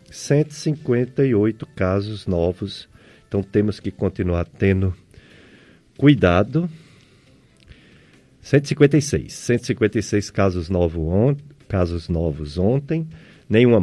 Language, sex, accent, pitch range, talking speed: Portuguese, male, Brazilian, 90-125 Hz, 80 wpm